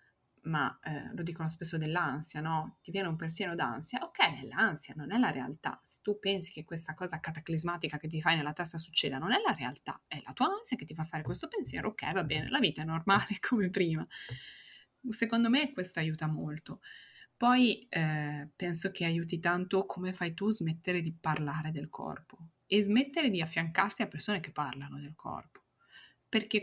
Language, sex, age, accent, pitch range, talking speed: Italian, female, 20-39, native, 155-190 Hz, 195 wpm